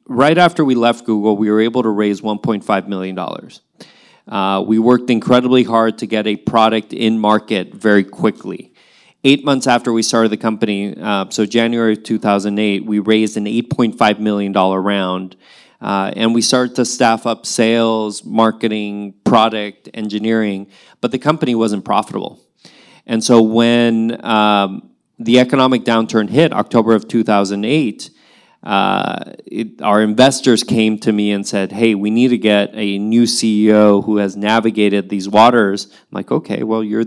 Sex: male